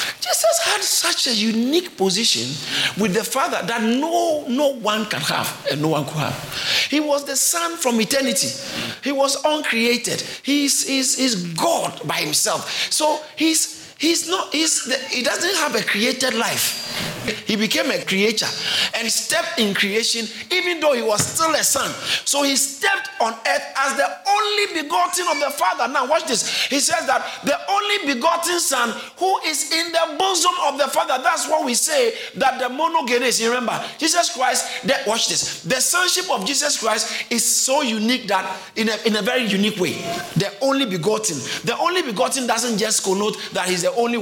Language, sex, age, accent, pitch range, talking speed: English, male, 40-59, Nigerian, 200-295 Hz, 180 wpm